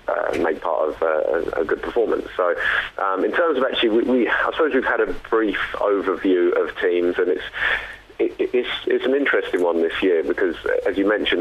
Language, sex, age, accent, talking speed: English, male, 30-49, British, 200 wpm